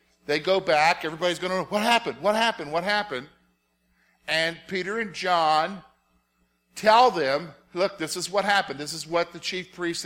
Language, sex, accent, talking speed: English, male, American, 180 wpm